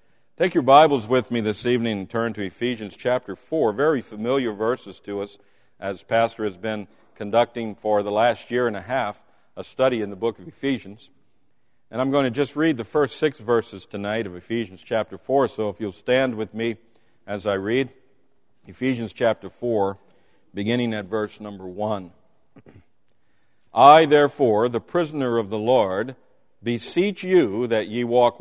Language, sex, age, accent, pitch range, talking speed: English, male, 50-69, American, 110-145 Hz, 170 wpm